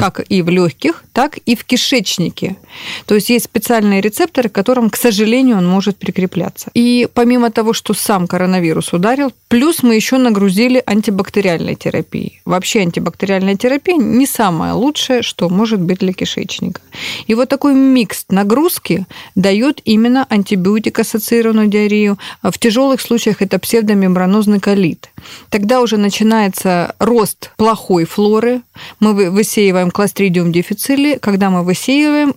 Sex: female